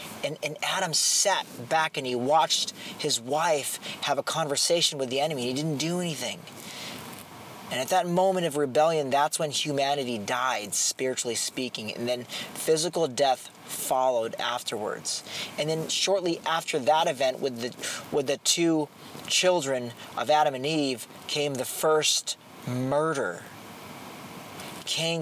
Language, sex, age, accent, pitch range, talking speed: English, male, 40-59, American, 135-165 Hz, 140 wpm